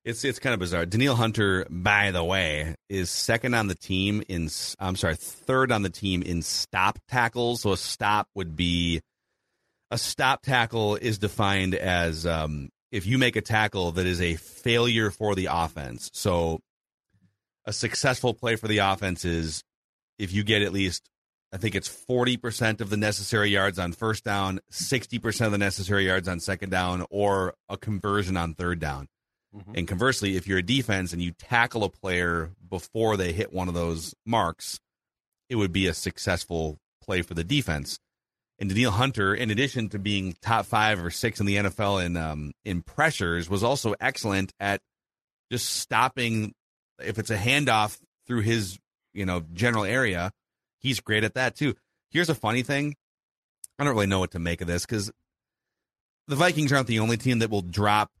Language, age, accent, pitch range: English, 30-49, American, 90-115 Hz